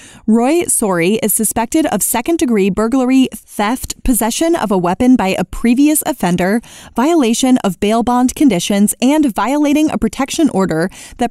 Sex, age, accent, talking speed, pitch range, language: female, 20-39, American, 145 wpm, 205-260 Hz, English